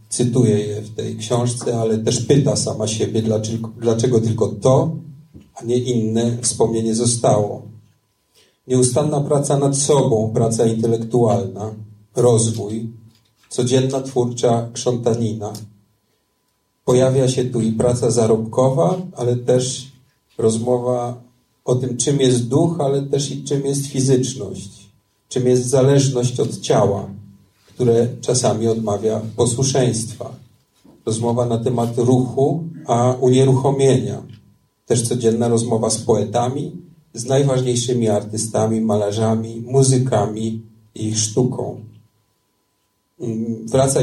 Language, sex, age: Polish, male, 40-59